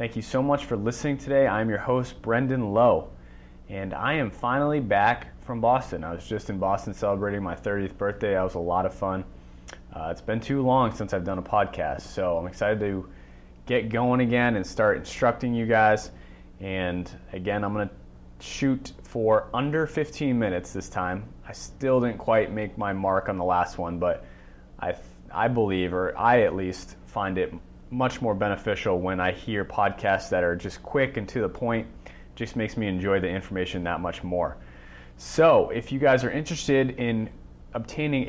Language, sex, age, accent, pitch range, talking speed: English, male, 30-49, American, 90-120 Hz, 190 wpm